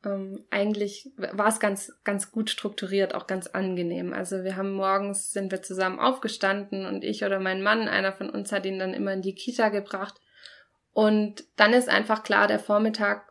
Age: 20-39